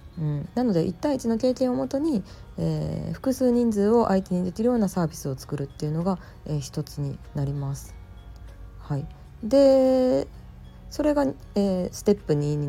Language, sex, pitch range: Japanese, female, 150-230 Hz